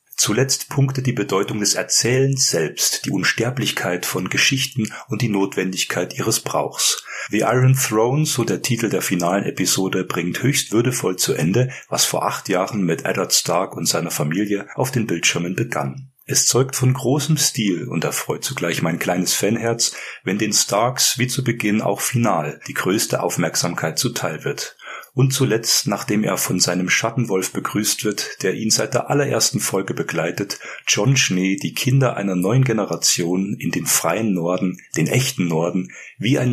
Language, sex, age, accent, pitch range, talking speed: German, male, 40-59, German, 95-130 Hz, 165 wpm